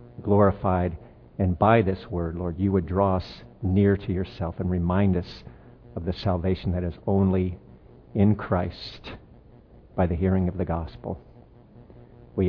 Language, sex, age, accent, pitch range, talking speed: English, male, 50-69, American, 100-140 Hz, 150 wpm